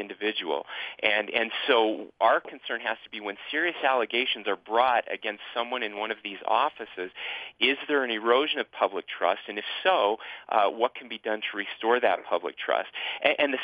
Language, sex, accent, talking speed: English, male, American, 195 wpm